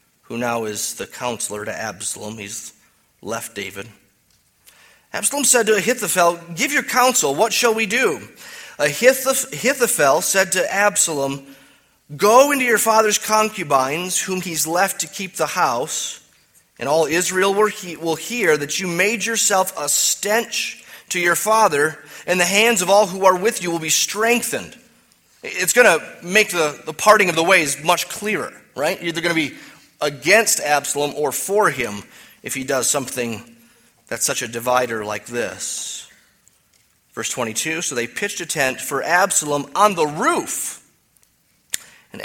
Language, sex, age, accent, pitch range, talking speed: English, male, 30-49, American, 120-205 Hz, 155 wpm